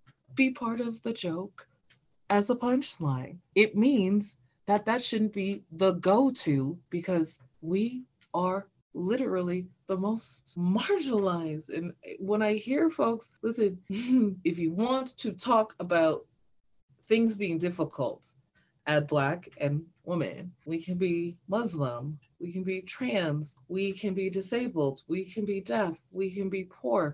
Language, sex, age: English, female, 20-39